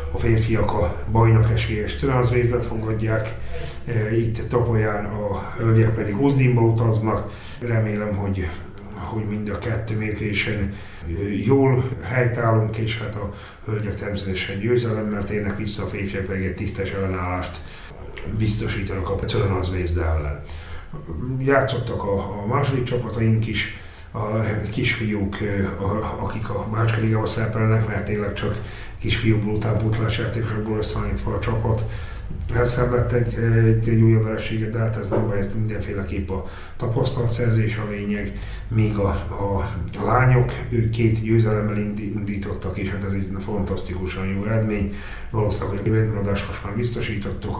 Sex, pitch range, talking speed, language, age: male, 95-110 Hz, 125 wpm, Hungarian, 30-49